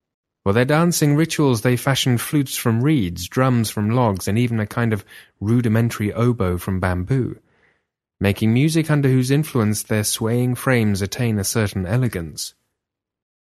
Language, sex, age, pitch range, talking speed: English, male, 30-49, 95-125 Hz, 145 wpm